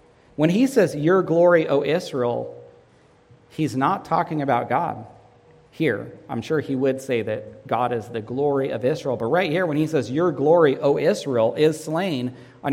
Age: 40-59